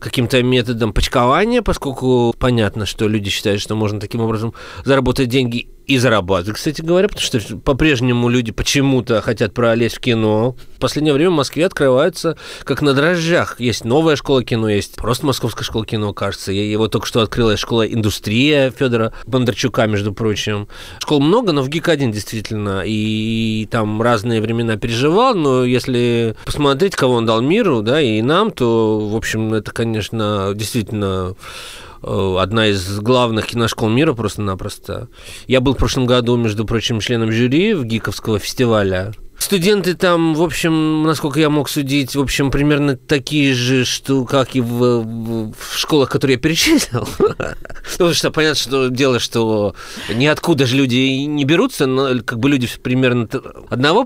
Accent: native